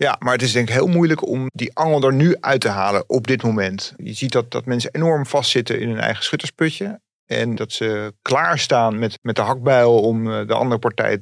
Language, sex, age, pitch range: Dutch, male, 40-59, 115-140 Hz